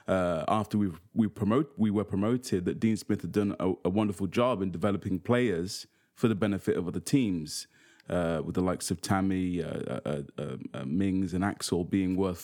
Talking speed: 200 wpm